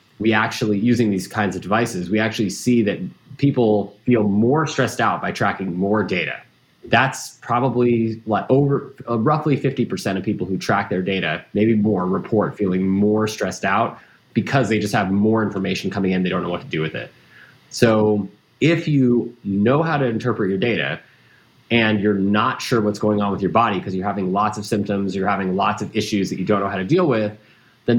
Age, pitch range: 20-39, 100-120 Hz